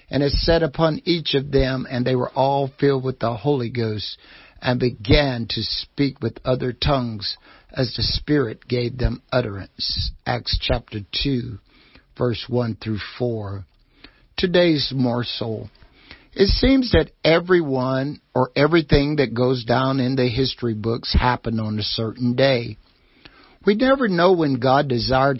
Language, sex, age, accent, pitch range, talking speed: English, male, 60-79, American, 115-140 Hz, 145 wpm